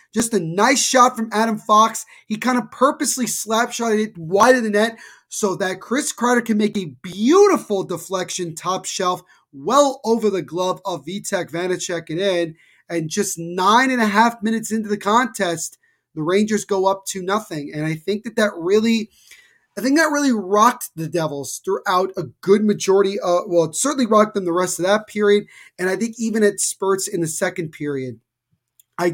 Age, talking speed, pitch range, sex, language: 20-39, 190 wpm, 175-225 Hz, male, English